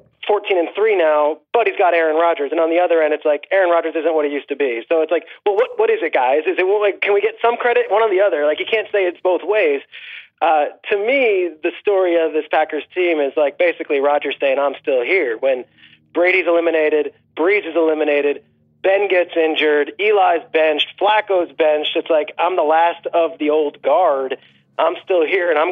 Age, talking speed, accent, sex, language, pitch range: 30-49, 225 wpm, American, male, English, 155-235 Hz